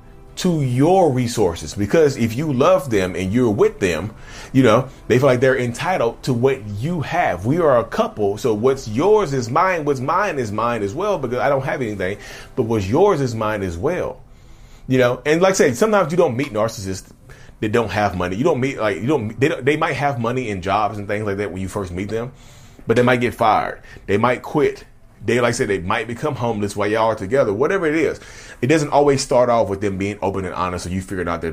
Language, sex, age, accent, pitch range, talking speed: English, male, 30-49, American, 105-130 Hz, 240 wpm